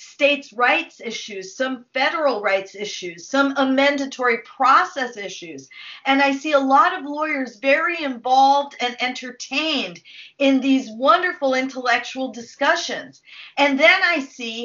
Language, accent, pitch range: English, American, 250-300 Hz